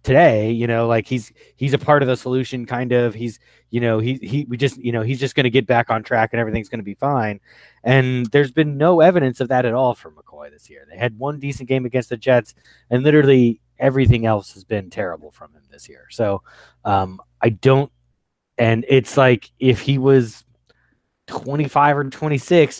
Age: 30-49